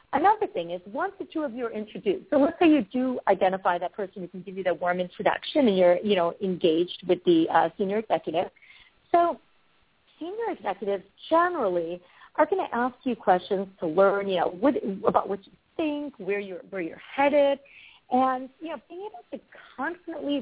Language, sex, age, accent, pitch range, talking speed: English, female, 40-59, American, 195-300 Hz, 195 wpm